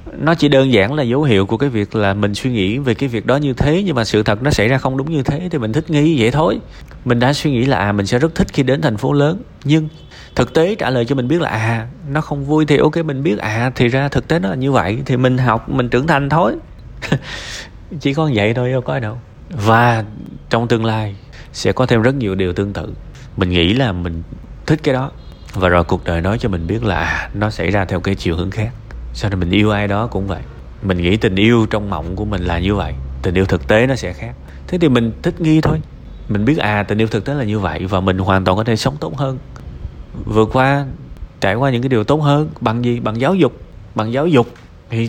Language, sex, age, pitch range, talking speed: Vietnamese, male, 20-39, 100-135 Hz, 260 wpm